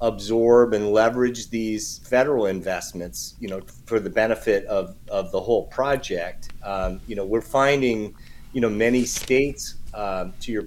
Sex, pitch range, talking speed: male, 105-125 Hz, 155 wpm